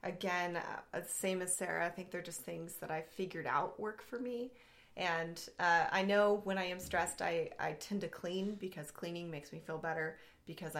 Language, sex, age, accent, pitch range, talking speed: English, female, 20-39, American, 165-185 Hz, 200 wpm